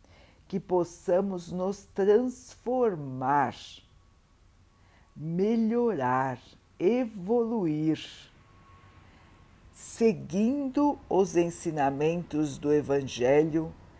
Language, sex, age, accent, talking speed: Portuguese, female, 60-79, Brazilian, 45 wpm